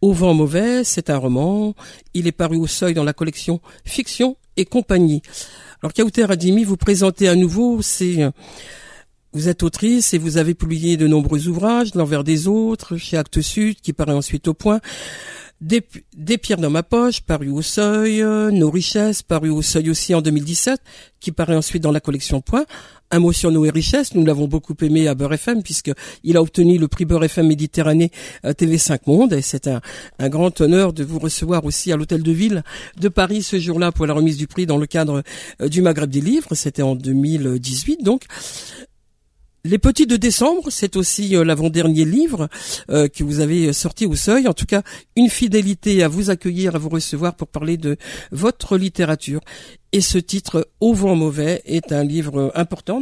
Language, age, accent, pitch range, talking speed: French, 50-69, French, 155-200 Hz, 200 wpm